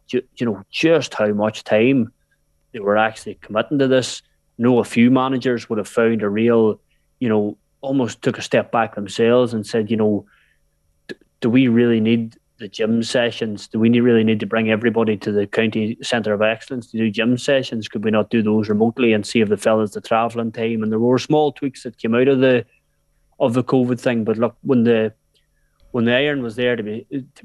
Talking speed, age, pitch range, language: 215 wpm, 20-39, 110-120 Hz, English